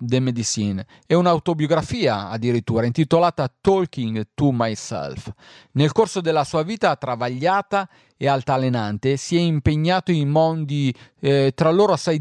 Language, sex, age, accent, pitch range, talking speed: Italian, male, 40-59, native, 120-165 Hz, 130 wpm